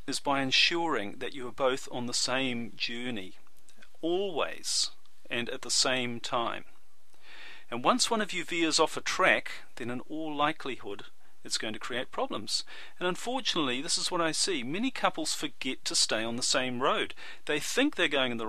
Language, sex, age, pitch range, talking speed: English, male, 40-59, 125-180 Hz, 185 wpm